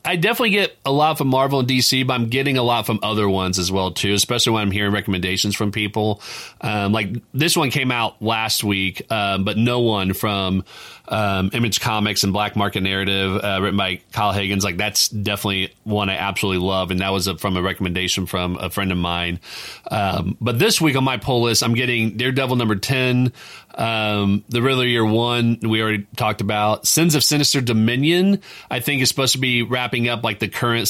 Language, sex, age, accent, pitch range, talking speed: English, male, 30-49, American, 100-125 Hz, 210 wpm